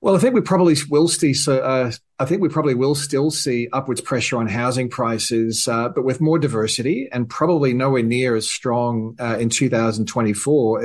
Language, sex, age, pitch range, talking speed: English, male, 40-59, 115-135 Hz, 190 wpm